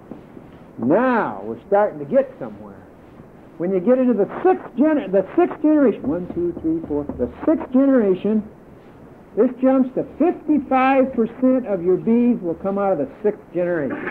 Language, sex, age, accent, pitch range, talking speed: English, male, 60-79, American, 155-255 Hz, 160 wpm